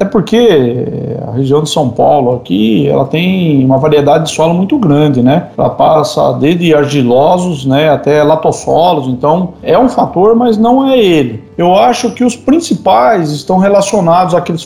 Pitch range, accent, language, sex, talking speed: 140-200 Hz, Brazilian, Portuguese, male, 165 wpm